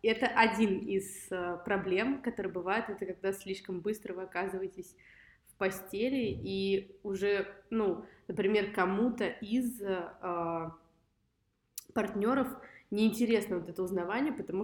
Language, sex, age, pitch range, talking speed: Russian, female, 20-39, 175-205 Hz, 110 wpm